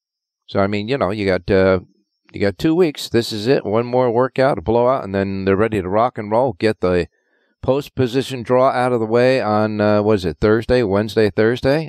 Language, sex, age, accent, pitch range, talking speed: English, male, 50-69, American, 90-125 Hz, 220 wpm